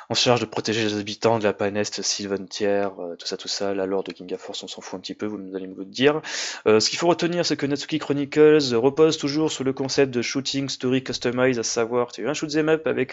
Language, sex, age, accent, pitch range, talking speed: French, male, 20-39, French, 105-155 Hz, 255 wpm